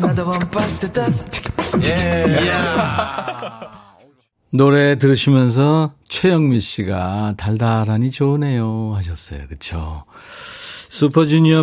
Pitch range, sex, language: 100-150 Hz, male, Korean